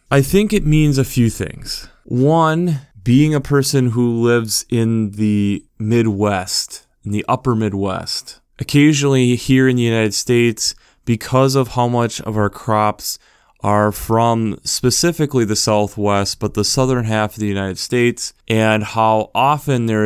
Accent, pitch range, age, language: American, 105-125 Hz, 20-39, English